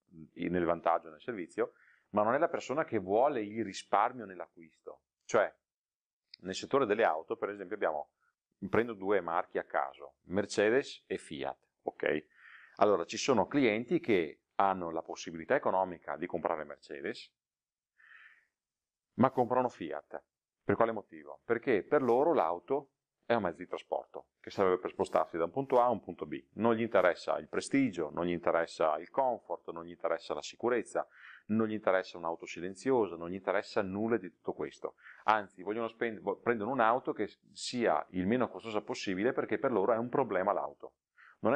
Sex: male